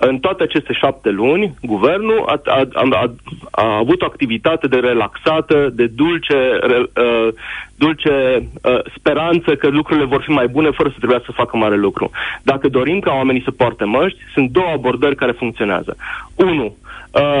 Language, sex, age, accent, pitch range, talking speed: Romanian, male, 30-49, native, 125-165 Hz, 150 wpm